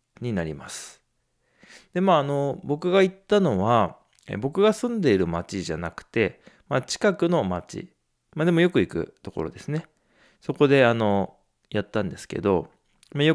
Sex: male